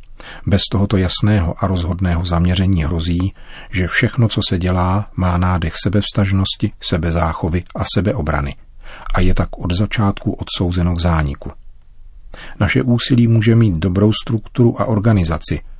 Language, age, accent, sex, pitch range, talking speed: Czech, 40-59, native, male, 90-105 Hz, 130 wpm